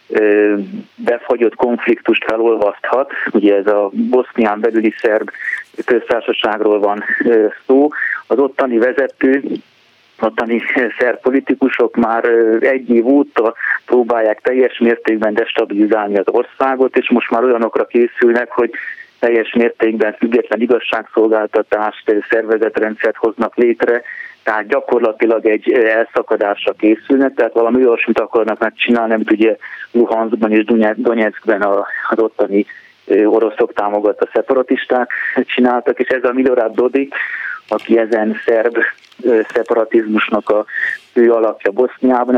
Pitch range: 110-125 Hz